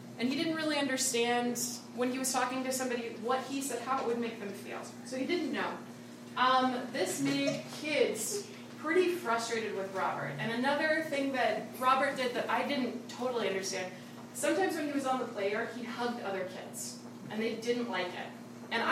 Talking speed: 190 wpm